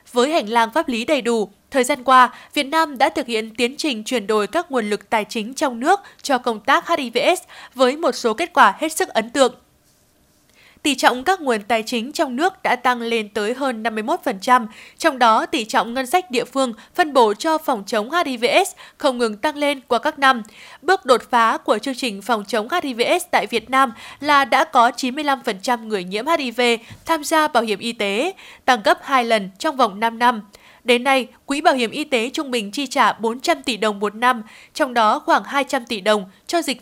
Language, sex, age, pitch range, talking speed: Vietnamese, female, 20-39, 230-300 Hz, 215 wpm